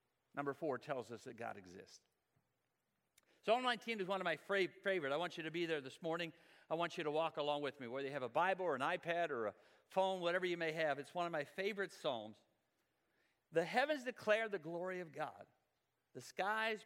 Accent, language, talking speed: American, English, 215 wpm